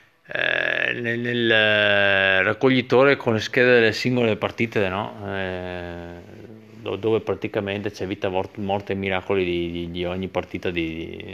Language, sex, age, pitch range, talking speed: Italian, male, 30-49, 95-125 Hz, 130 wpm